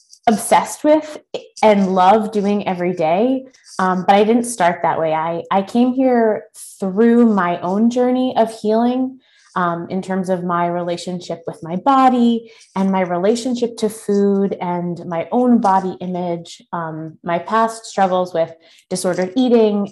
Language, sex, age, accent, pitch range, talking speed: English, female, 20-39, American, 185-235 Hz, 150 wpm